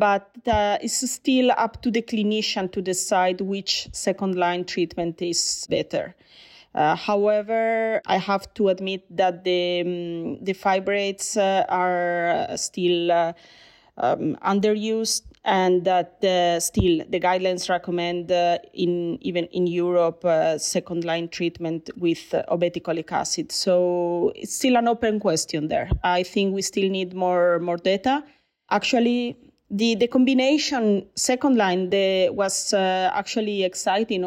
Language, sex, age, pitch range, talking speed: English, female, 30-49, 180-215 Hz, 135 wpm